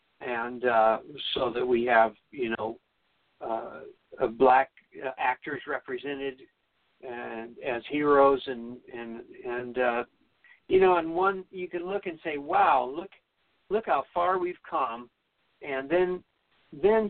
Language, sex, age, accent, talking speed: English, male, 60-79, American, 135 wpm